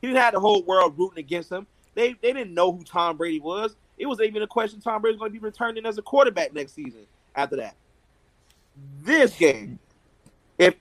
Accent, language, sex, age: American, English, male, 30-49